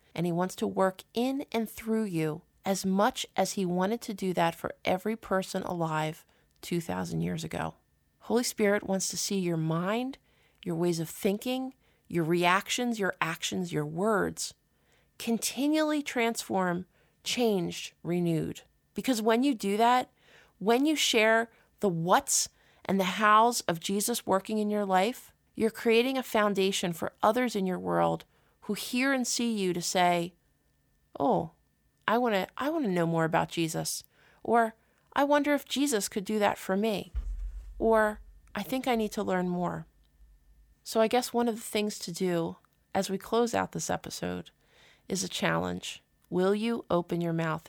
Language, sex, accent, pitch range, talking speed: English, female, American, 170-225 Hz, 165 wpm